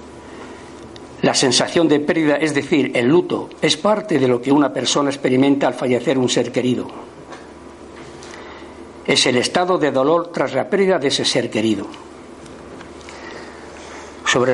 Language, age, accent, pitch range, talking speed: Spanish, 60-79, Spanish, 125-160 Hz, 140 wpm